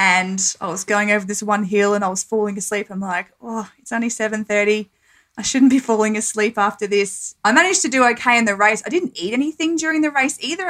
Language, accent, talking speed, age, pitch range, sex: English, Australian, 235 wpm, 20-39, 195-235 Hz, female